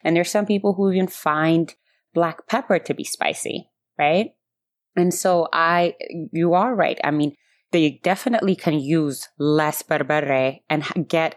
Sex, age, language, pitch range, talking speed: female, 20-39, English, 145-180 Hz, 155 wpm